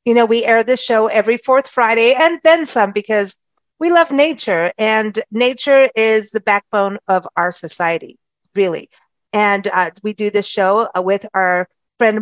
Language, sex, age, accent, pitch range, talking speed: English, female, 40-59, American, 195-245 Hz, 170 wpm